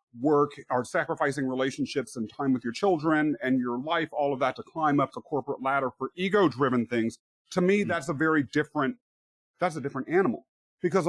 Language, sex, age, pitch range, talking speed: English, male, 40-59, 130-160 Hz, 190 wpm